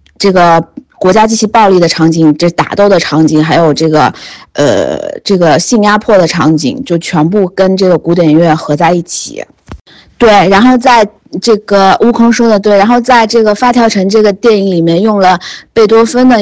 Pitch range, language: 170-215 Hz, Chinese